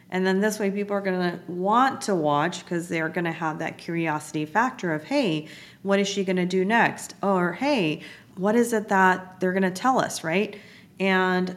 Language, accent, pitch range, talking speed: English, American, 170-205 Hz, 220 wpm